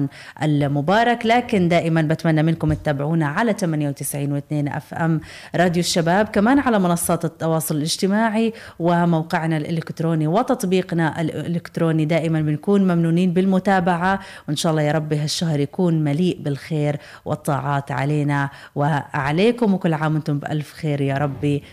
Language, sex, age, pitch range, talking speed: Arabic, female, 30-49, 150-190 Hz, 120 wpm